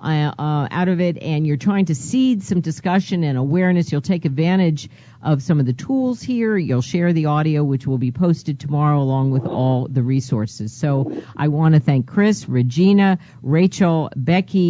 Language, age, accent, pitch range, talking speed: English, 50-69, American, 130-165 Hz, 185 wpm